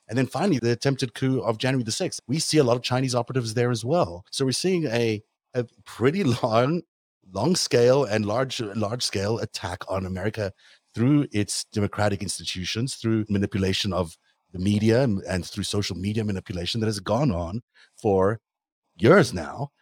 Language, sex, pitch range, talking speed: English, male, 95-120 Hz, 175 wpm